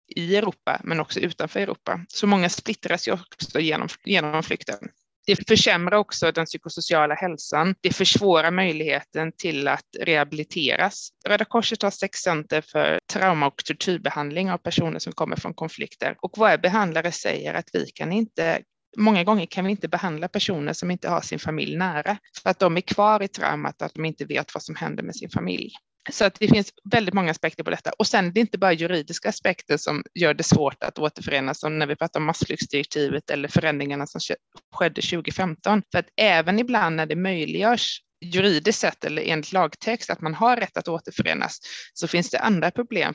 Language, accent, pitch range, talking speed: Swedish, native, 155-195 Hz, 190 wpm